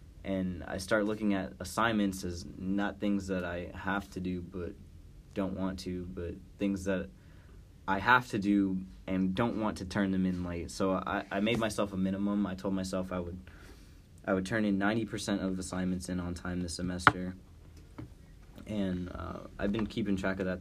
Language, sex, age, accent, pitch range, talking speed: English, male, 20-39, American, 90-95 Hz, 190 wpm